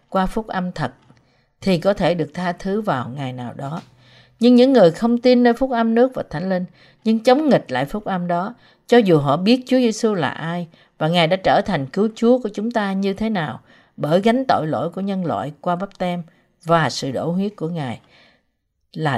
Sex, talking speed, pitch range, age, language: female, 220 wpm, 150-215 Hz, 50-69, Vietnamese